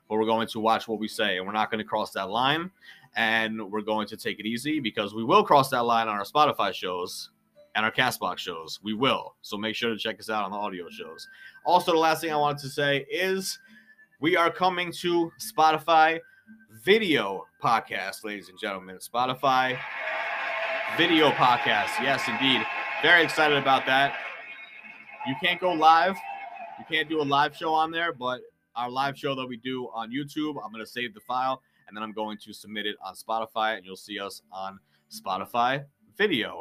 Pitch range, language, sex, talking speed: 110-155 Hz, English, male, 200 wpm